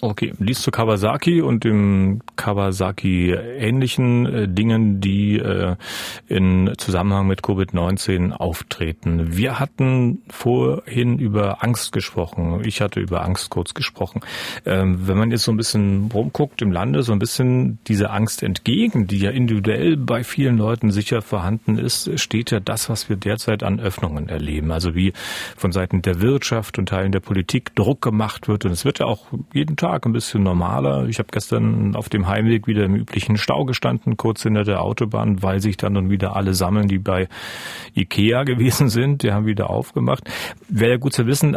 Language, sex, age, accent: German, male, 40-59, German